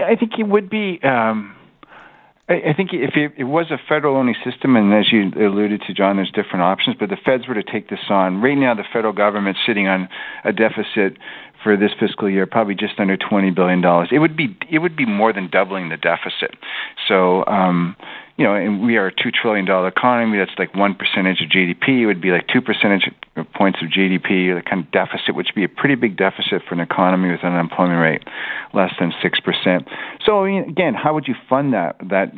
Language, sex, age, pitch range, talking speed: English, male, 40-59, 95-115 Hz, 230 wpm